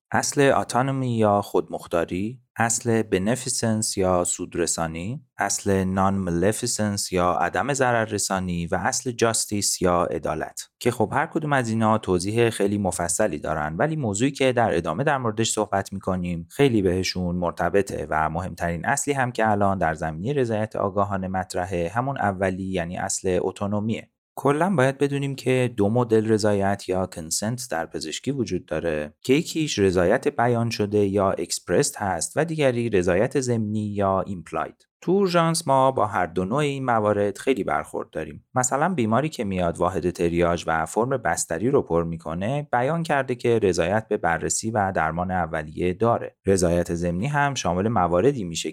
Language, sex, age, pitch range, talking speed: Persian, male, 30-49, 90-125 Hz, 155 wpm